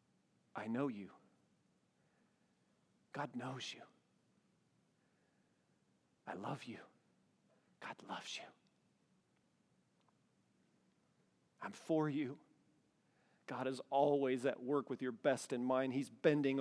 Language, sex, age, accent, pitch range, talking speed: English, male, 40-59, American, 130-175 Hz, 100 wpm